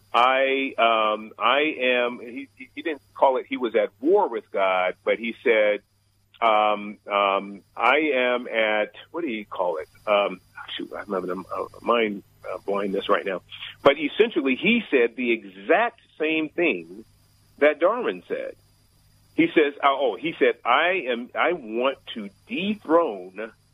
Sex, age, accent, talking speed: male, 40-59, American, 150 wpm